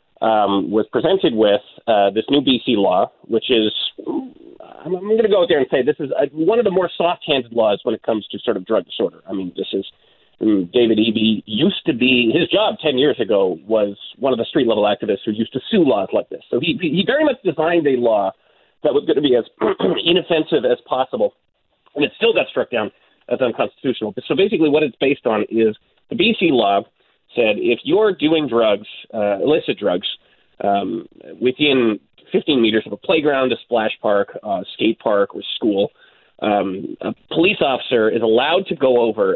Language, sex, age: English, male, 30-49